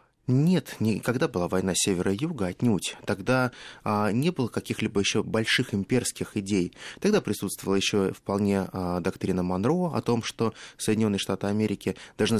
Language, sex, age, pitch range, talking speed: Russian, male, 20-39, 100-130 Hz, 150 wpm